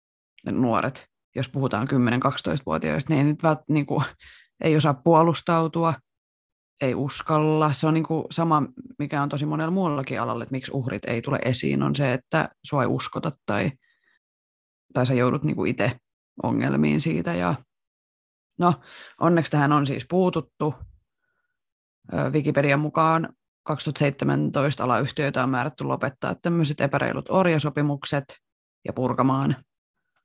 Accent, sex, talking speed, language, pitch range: native, female, 125 wpm, Finnish, 125-155 Hz